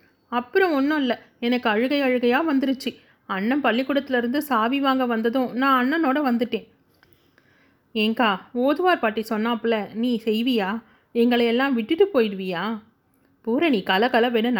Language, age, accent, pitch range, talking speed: Tamil, 30-49, native, 205-265 Hz, 110 wpm